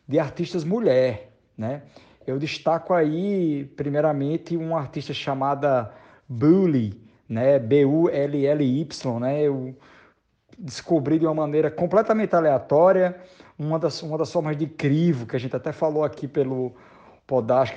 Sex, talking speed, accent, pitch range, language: male, 140 wpm, Brazilian, 125-150 Hz, Portuguese